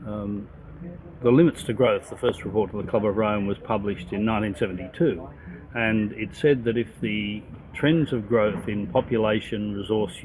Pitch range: 95-110 Hz